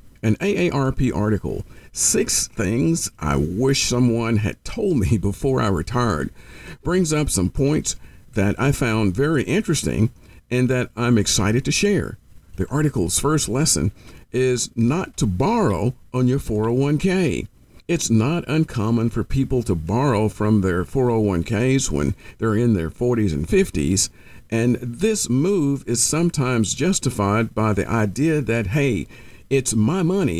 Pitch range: 100-135 Hz